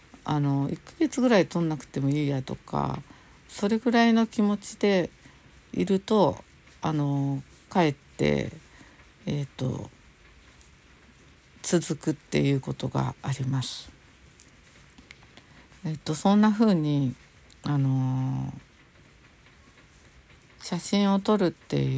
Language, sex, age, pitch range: Japanese, female, 60-79, 135-175 Hz